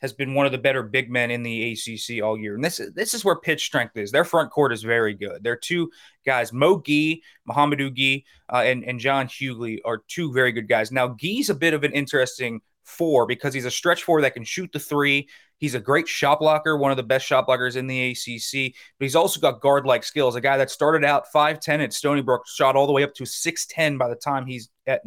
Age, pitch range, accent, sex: 20-39, 125-150 Hz, American, male